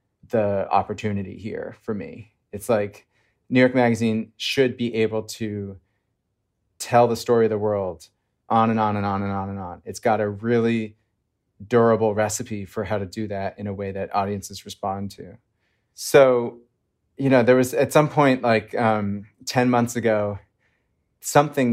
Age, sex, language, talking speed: 30-49, male, English, 170 wpm